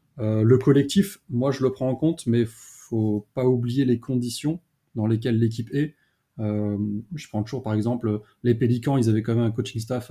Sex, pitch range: male, 110-135 Hz